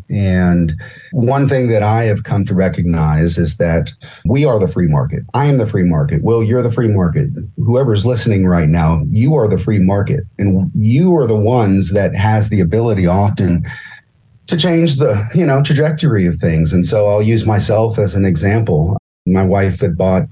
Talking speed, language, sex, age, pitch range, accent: 190 wpm, English, male, 40-59, 85-110 Hz, American